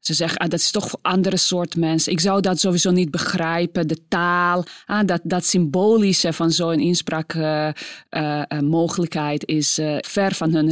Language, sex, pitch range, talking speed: Dutch, female, 155-190 Hz, 180 wpm